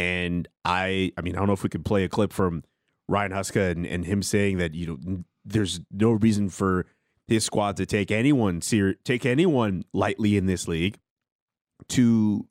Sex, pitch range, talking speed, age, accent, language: male, 95-125 Hz, 190 wpm, 30-49, American, English